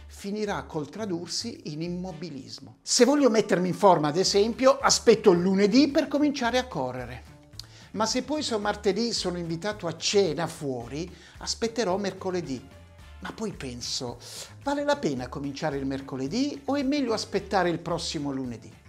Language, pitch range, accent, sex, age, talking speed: Italian, 155-225 Hz, native, male, 60-79, 145 wpm